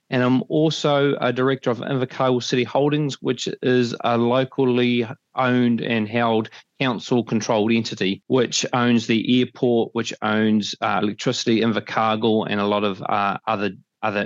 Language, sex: English, male